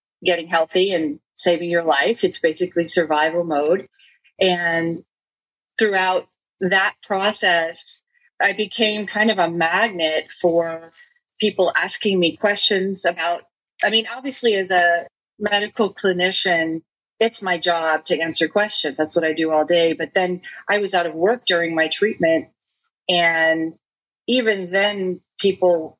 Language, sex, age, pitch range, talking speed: English, female, 40-59, 175-225 Hz, 135 wpm